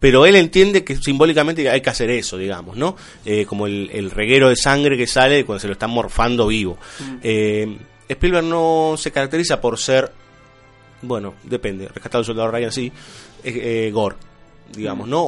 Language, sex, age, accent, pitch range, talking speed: Spanish, male, 30-49, Argentinian, 110-145 Hz, 180 wpm